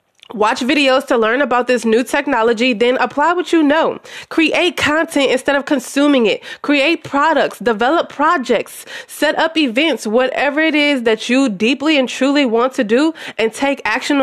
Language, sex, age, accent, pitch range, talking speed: English, female, 20-39, American, 230-300 Hz, 170 wpm